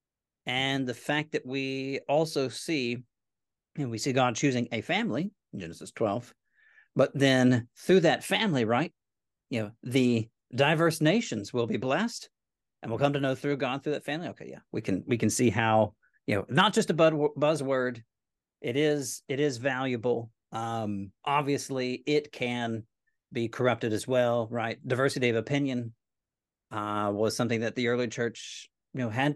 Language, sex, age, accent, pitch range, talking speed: English, male, 40-59, American, 115-150 Hz, 170 wpm